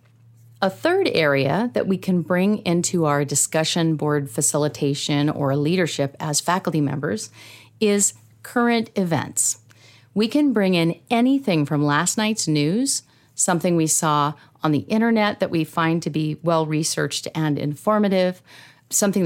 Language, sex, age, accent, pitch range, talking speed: English, female, 40-59, American, 150-200 Hz, 135 wpm